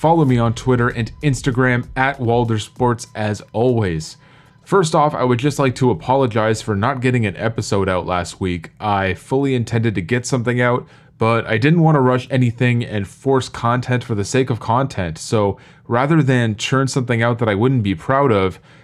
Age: 20-39